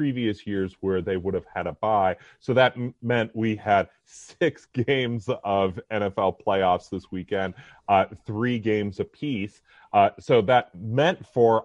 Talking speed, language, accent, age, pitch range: 160 wpm, English, American, 30-49, 110-145 Hz